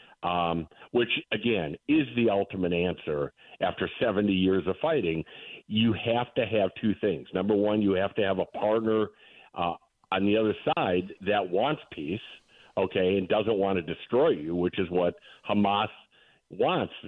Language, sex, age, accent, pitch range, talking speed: English, male, 50-69, American, 95-120 Hz, 160 wpm